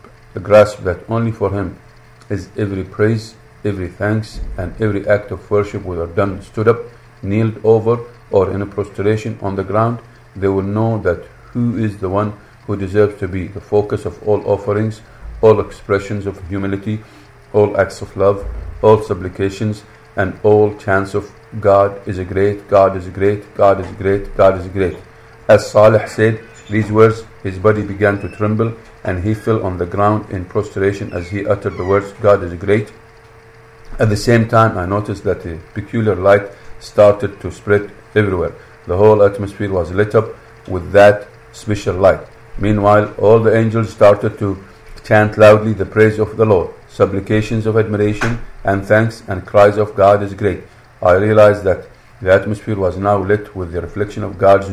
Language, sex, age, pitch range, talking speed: English, male, 50-69, 100-110 Hz, 175 wpm